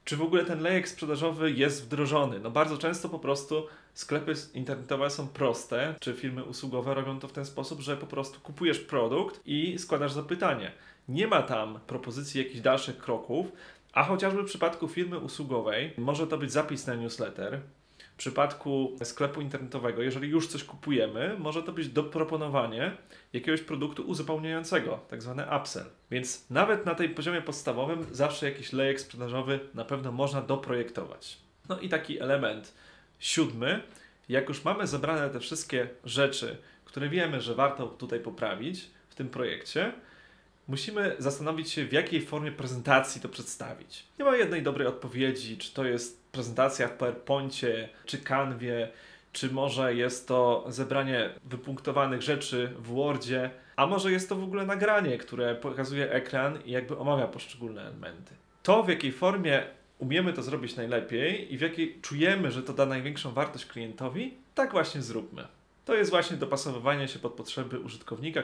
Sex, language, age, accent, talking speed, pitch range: male, Polish, 30-49, native, 160 wpm, 130-160 Hz